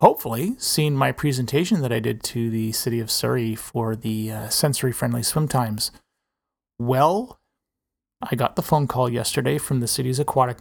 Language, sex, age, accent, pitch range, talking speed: English, male, 30-49, American, 115-155 Hz, 165 wpm